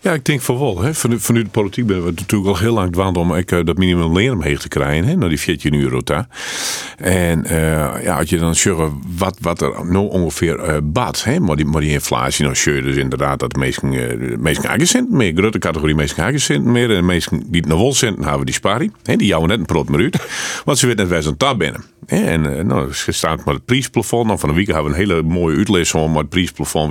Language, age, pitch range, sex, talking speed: Dutch, 50-69, 80-110 Hz, male, 260 wpm